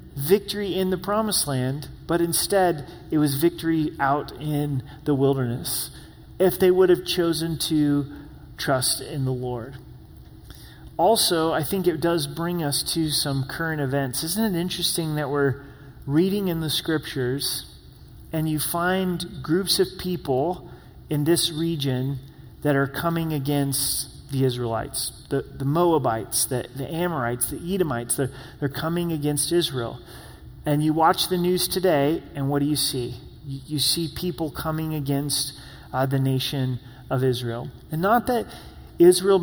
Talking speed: 150 wpm